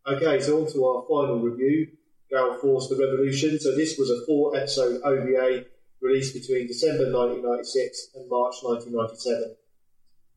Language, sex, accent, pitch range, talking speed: English, male, British, 120-150 Hz, 140 wpm